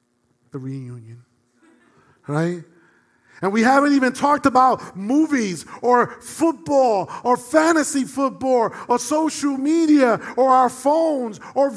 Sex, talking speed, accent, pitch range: male, 110 wpm, American, 150-230 Hz